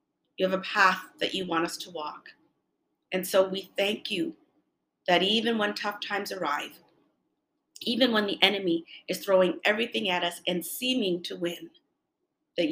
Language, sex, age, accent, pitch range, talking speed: English, female, 40-59, American, 175-210 Hz, 165 wpm